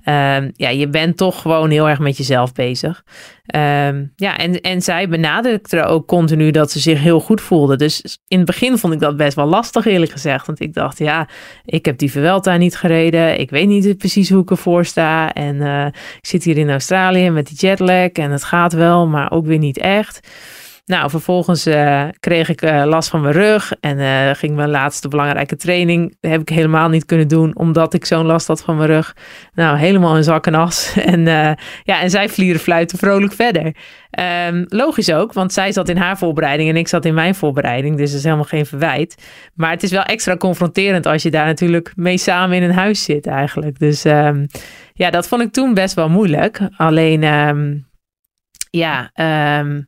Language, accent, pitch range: Dutch, Dutch, 150-180 Hz